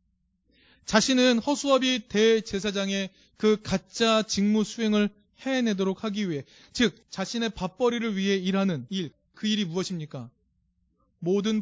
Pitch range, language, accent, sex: 185-235 Hz, Korean, native, male